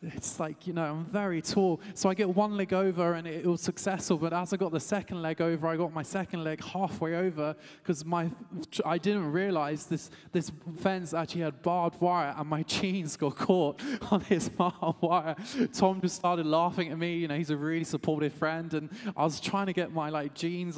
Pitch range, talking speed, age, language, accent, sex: 155-180 Hz, 220 wpm, 20-39, English, British, male